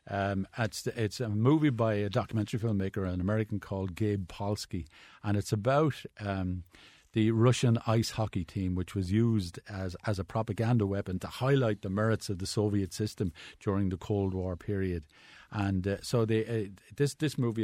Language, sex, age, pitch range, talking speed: English, male, 50-69, 95-120 Hz, 175 wpm